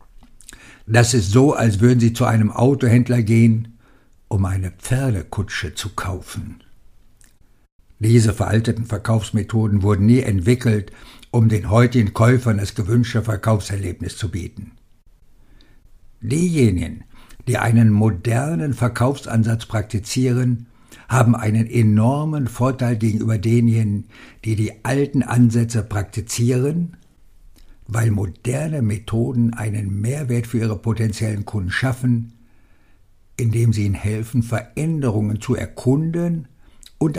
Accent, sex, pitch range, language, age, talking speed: German, male, 105-125 Hz, German, 60-79, 105 wpm